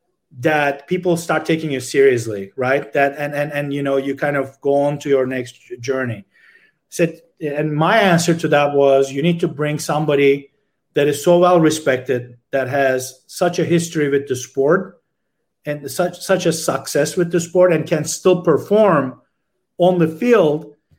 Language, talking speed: English, 175 wpm